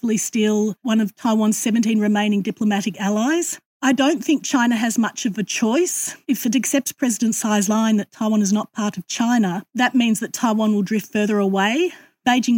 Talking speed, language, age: 185 wpm, English, 40-59